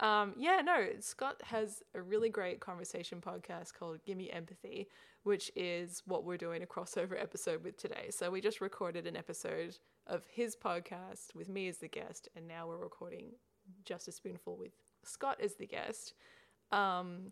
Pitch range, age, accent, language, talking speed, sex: 185-255 Hz, 20-39, Australian, English, 175 wpm, female